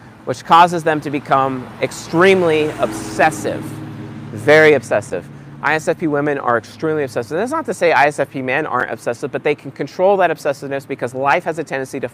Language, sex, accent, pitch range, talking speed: English, male, American, 120-155 Hz, 175 wpm